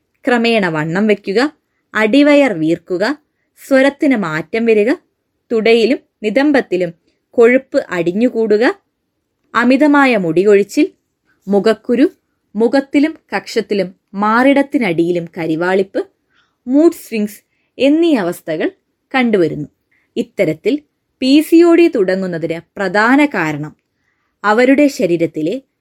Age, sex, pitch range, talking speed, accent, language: 20-39, female, 180-285 Hz, 70 wpm, native, Malayalam